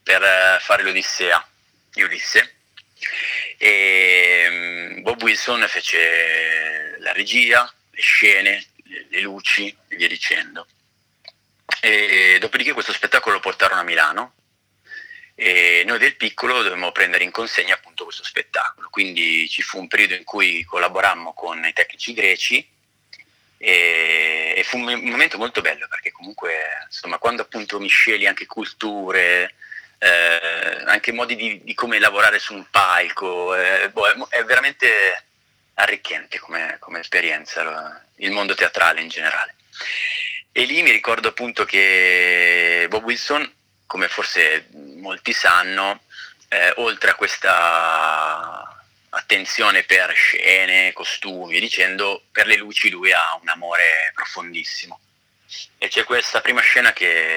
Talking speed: 130 wpm